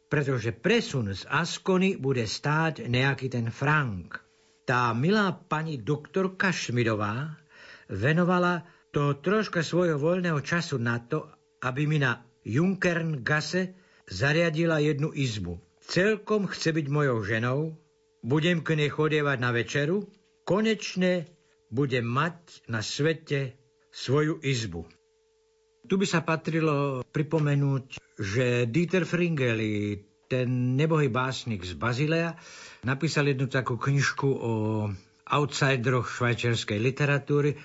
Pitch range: 120-165 Hz